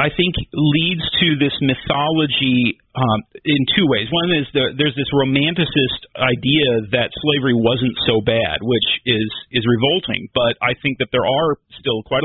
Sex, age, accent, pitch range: male, 40-59, American, 115-145 Hz